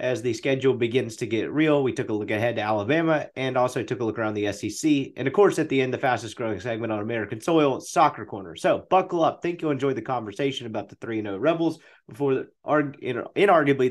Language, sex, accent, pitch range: English, male, American, 125-170 Hz